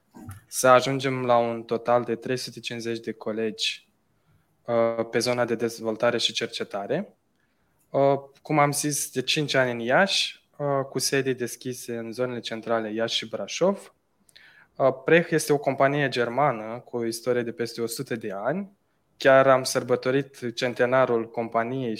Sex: male